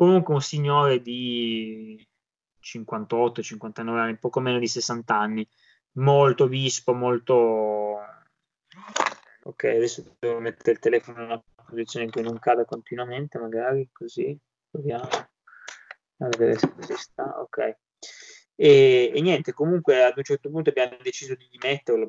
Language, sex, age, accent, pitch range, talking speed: Italian, male, 20-39, native, 115-140 Hz, 140 wpm